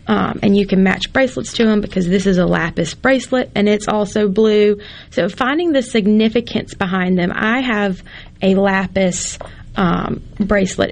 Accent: American